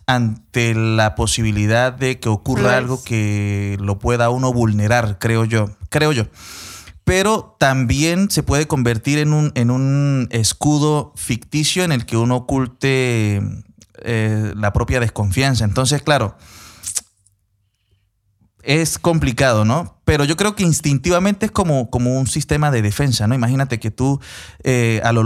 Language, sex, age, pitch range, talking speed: Spanish, male, 30-49, 110-135 Hz, 145 wpm